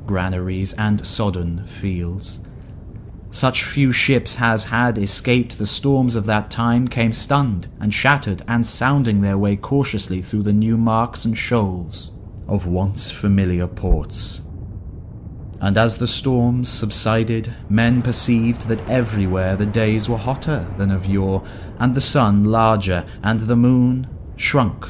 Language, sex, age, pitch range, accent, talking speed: English, male, 30-49, 100-120 Hz, British, 140 wpm